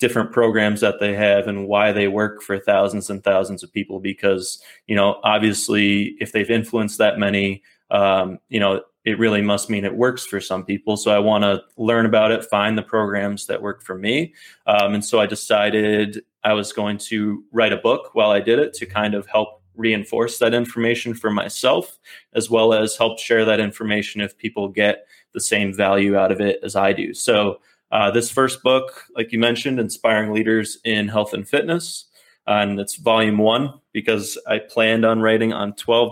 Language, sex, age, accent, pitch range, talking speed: English, male, 20-39, American, 105-115 Hz, 200 wpm